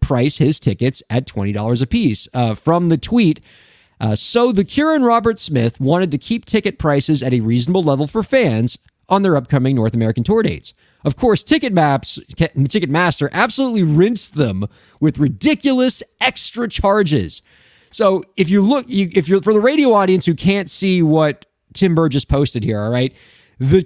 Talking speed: 180 wpm